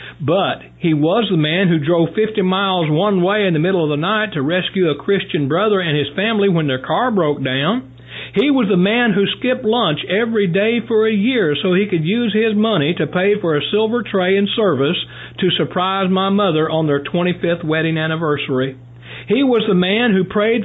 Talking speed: 205 wpm